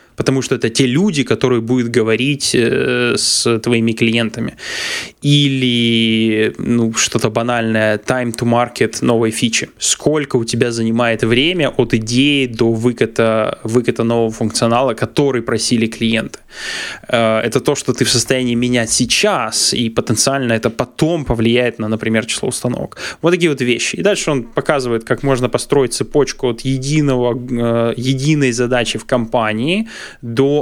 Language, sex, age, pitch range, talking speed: Russian, male, 20-39, 115-135 Hz, 145 wpm